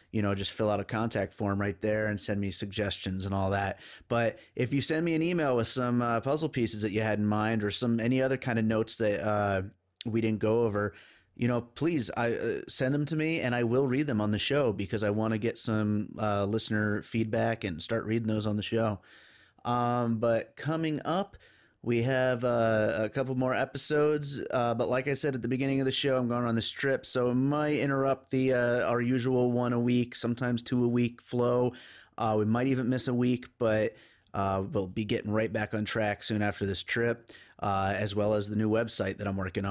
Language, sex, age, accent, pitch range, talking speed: English, male, 30-49, American, 105-125 Hz, 225 wpm